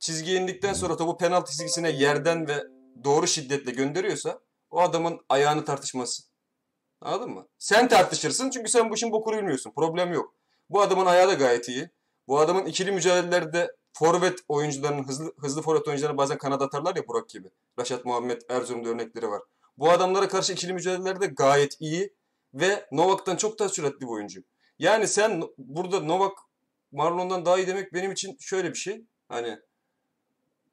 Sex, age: male, 30-49